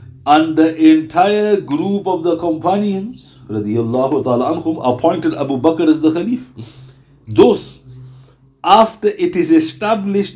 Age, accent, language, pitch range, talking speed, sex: 60-79, Indian, English, 130-210 Hz, 105 wpm, male